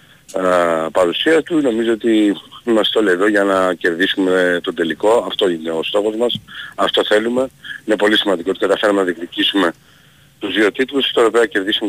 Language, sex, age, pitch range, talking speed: Greek, male, 40-59, 90-120 Hz, 165 wpm